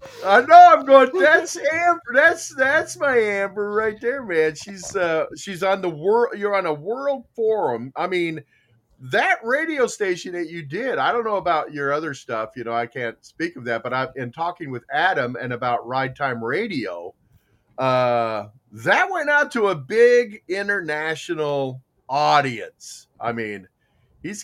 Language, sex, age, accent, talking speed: English, male, 40-59, American, 170 wpm